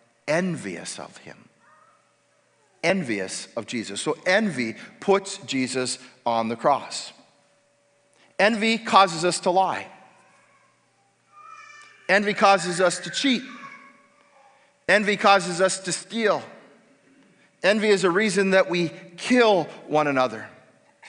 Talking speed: 105 wpm